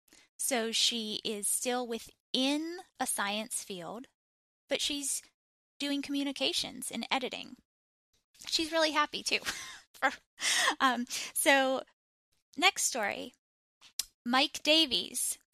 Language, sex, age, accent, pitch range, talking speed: English, female, 10-29, American, 220-280 Hz, 95 wpm